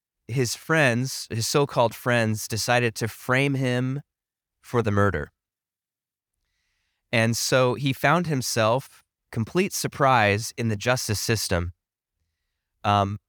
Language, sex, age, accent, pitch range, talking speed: English, male, 20-39, American, 100-130 Hz, 110 wpm